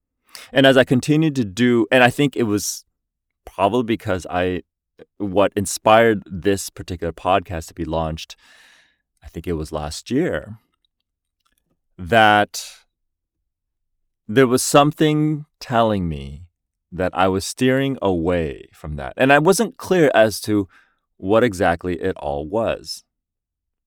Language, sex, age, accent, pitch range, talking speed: English, male, 30-49, American, 85-120 Hz, 130 wpm